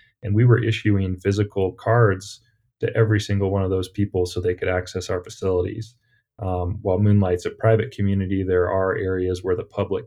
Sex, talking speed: male, 185 wpm